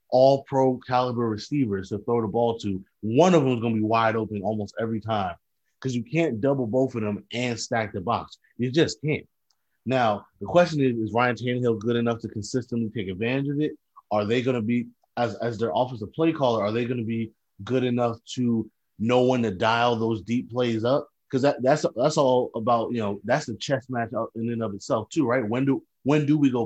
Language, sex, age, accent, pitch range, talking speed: English, male, 30-49, American, 110-125 Hz, 225 wpm